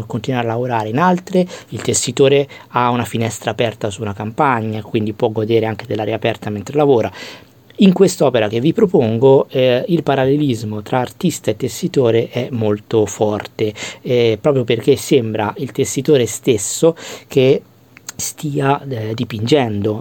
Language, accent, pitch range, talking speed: Italian, native, 115-130 Hz, 145 wpm